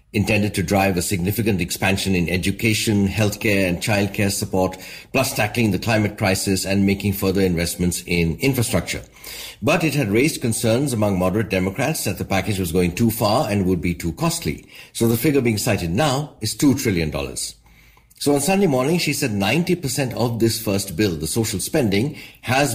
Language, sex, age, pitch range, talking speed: English, male, 60-79, 95-120 Hz, 175 wpm